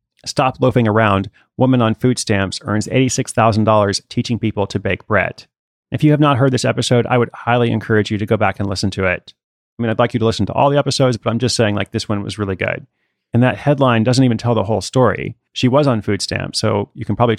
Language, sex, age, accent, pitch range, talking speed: English, male, 30-49, American, 110-130 Hz, 250 wpm